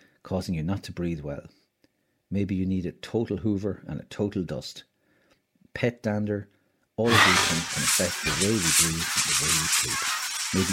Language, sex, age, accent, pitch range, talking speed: English, male, 60-79, Irish, 80-105 Hz, 190 wpm